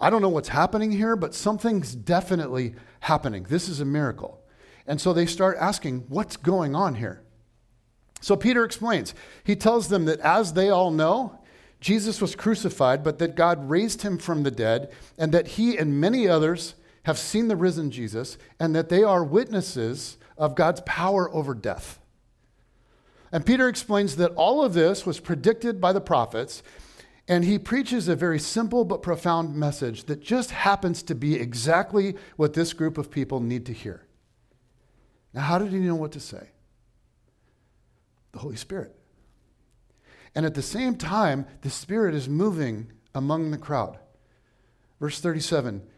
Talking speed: 165 wpm